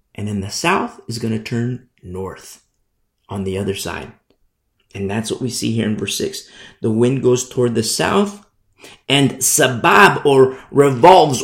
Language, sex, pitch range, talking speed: English, male, 105-140 Hz, 170 wpm